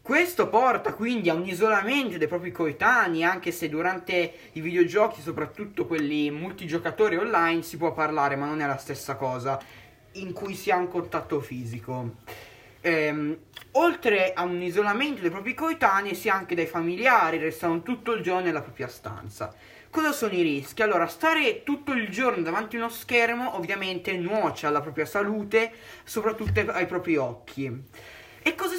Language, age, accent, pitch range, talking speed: Italian, 20-39, native, 155-215 Hz, 165 wpm